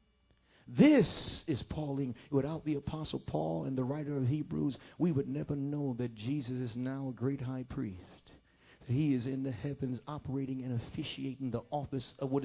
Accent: American